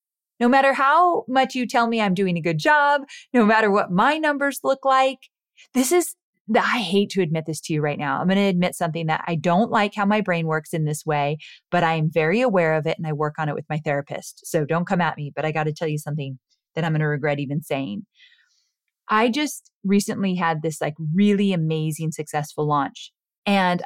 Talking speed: 220 wpm